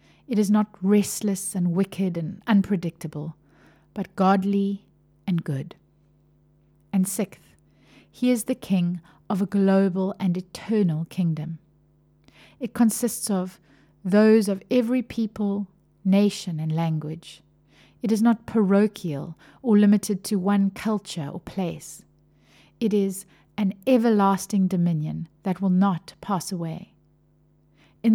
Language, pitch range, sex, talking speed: English, 155-205 Hz, female, 120 wpm